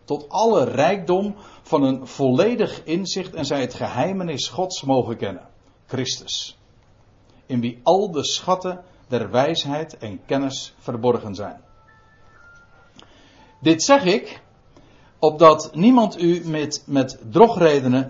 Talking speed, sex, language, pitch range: 115 wpm, male, Dutch, 120-180 Hz